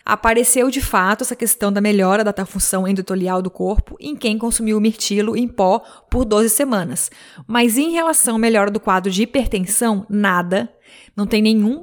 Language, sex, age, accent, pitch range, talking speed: Portuguese, female, 20-39, Brazilian, 210-250 Hz, 180 wpm